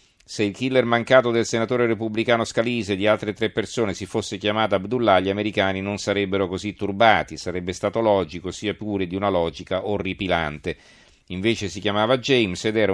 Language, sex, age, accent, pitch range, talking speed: Italian, male, 40-59, native, 90-110 Hz, 175 wpm